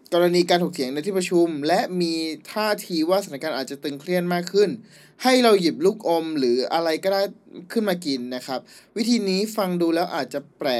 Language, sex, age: Thai, male, 20-39